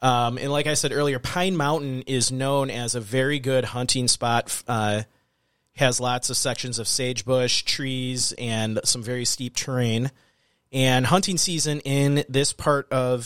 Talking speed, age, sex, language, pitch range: 165 wpm, 30-49, male, English, 120-150 Hz